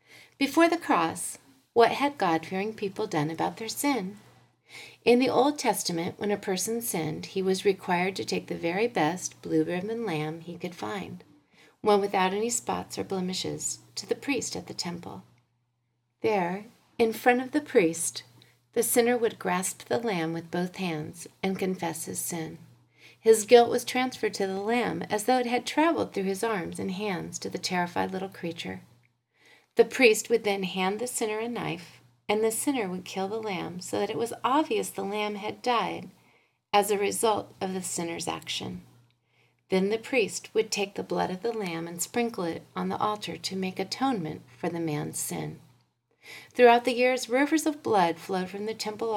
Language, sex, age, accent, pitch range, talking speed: English, female, 40-59, American, 165-230 Hz, 185 wpm